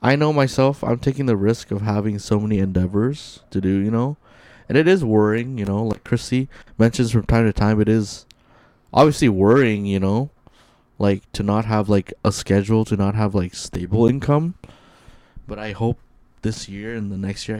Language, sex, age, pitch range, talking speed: English, male, 20-39, 95-115 Hz, 195 wpm